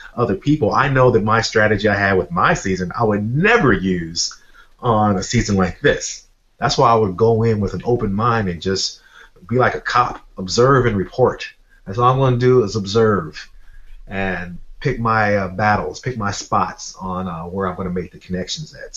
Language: English